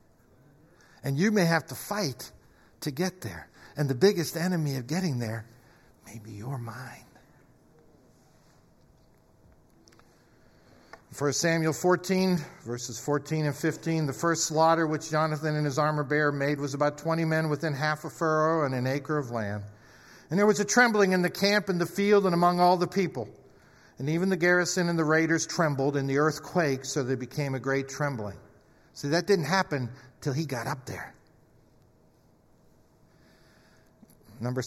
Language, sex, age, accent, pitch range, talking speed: English, male, 60-79, American, 135-175 Hz, 160 wpm